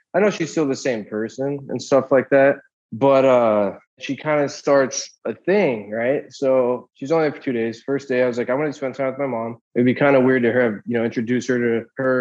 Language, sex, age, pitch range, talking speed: English, male, 20-39, 110-135 Hz, 260 wpm